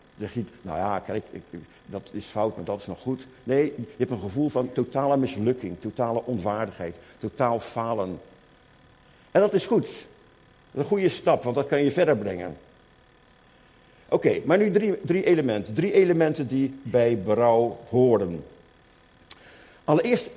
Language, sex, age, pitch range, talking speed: Dutch, male, 50-69, 105-160 Hz, 160 wpm